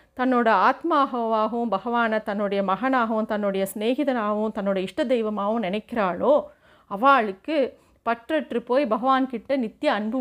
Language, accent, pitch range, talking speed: Tamil, native, 225-280 Hz, 100 wpm